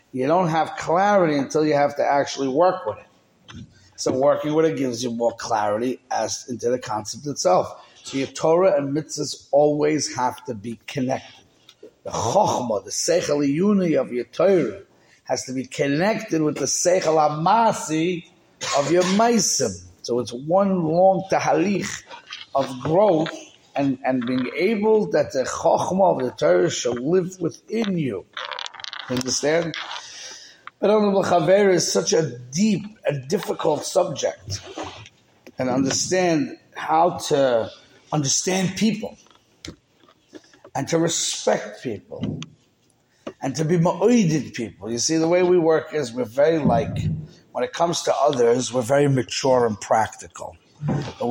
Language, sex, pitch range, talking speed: English, male, 130-175 Hz, 145 wpm